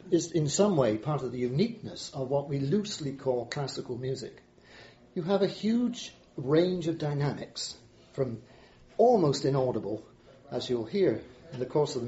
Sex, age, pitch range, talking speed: male, 40-59, 130-170 Hz, 165 wpm